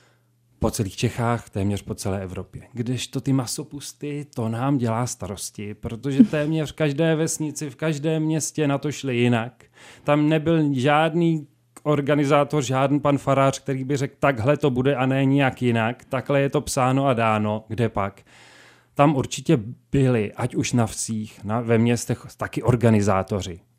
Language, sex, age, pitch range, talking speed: Czech, male, 30-49, 110-135 Hz, 160 wpm